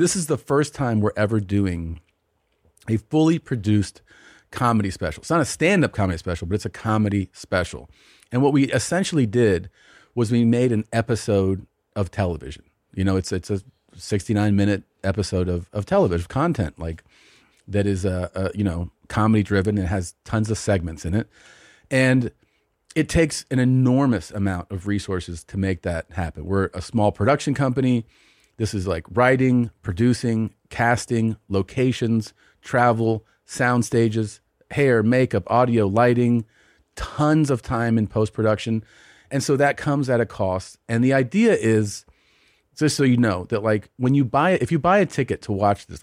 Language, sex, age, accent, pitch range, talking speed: English, male, 40-59, American, 100-125 Hz, 165 wpm